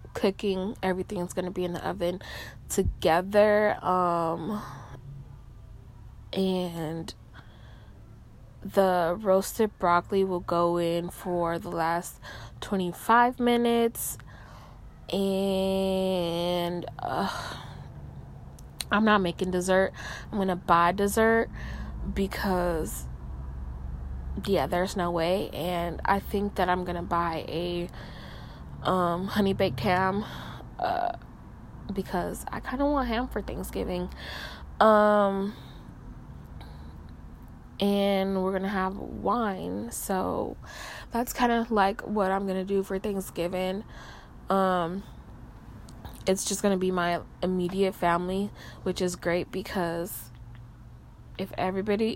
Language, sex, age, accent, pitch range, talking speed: English, female, 20-39, American, 170-200 Hz, 100 wpm